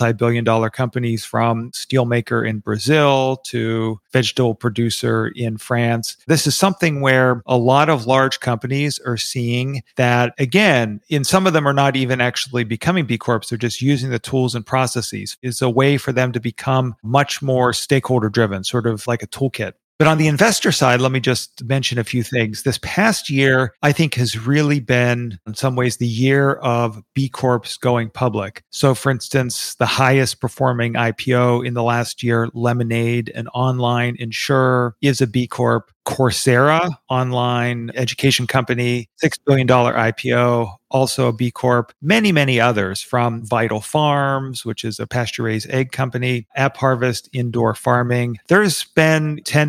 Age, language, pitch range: 40-59, English, 120-140 Hz